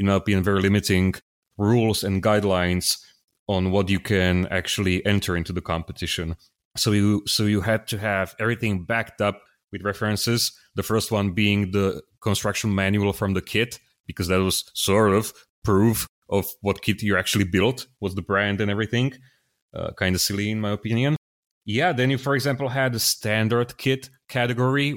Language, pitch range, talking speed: English, 95-120 Hz, 175 wpm